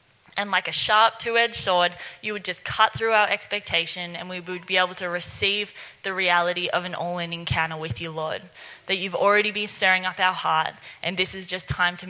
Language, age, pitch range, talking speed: English, 20-39, 170-210 Hz, 215 wpm